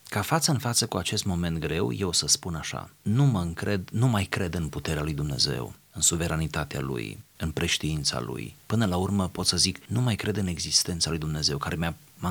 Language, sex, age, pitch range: Romanian, male, 30-49, 85-115 Hz